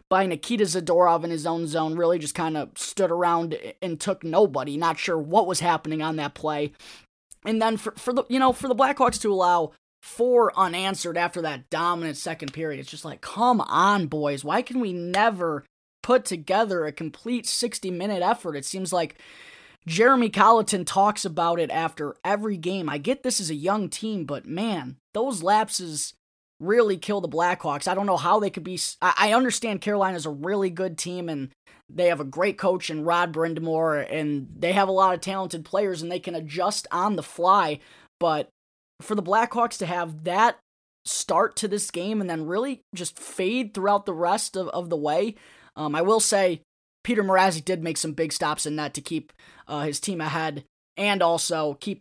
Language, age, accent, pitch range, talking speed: English, 20-39, American, 160-200 Hz, 195 wpm